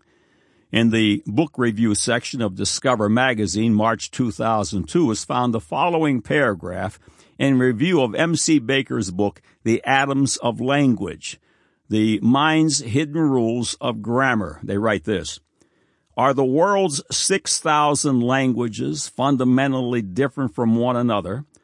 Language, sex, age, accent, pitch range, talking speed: English, male, 60-79, American, 110-140 Hz, 120 wpm